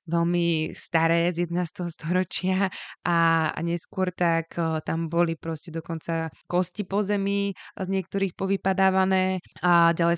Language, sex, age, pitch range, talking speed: Slovak, female, 20-39, 165-180 Hz, 125 wpm